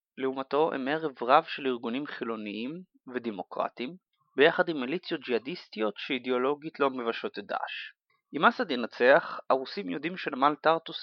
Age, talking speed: 30-49, 130 wpm